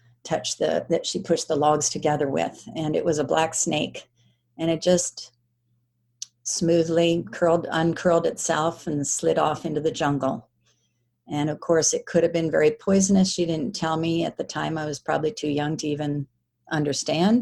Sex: female